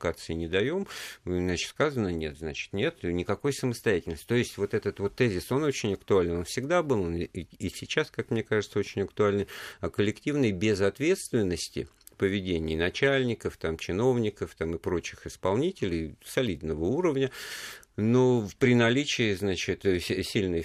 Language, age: Russian, 50-69